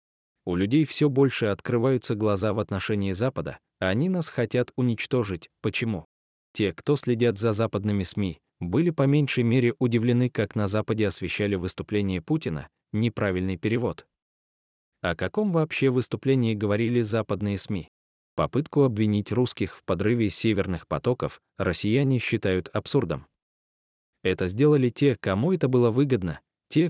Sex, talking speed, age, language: male, 130 wpm, 20-39, Russian